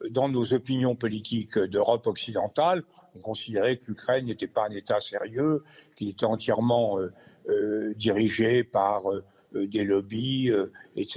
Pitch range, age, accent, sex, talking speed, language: 135-210 Hz, 60-79, French, male, 145 wpm, French